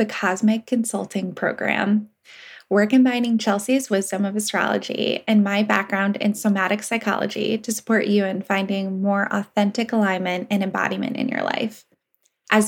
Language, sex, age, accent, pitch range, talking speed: English, female, 10-29, American, 200-225 Hz, 140 wpm